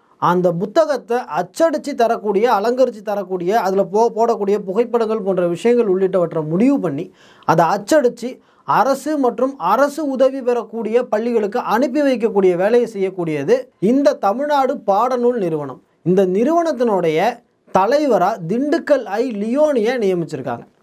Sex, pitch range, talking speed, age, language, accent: male, 215-275 Hz, 110 wpm, 20-39, Tamil, native